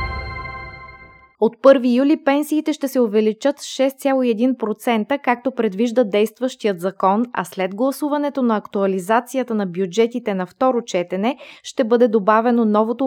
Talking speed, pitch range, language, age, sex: 125 wpm, 205-250 Hz, Bulgarian, 20-39, female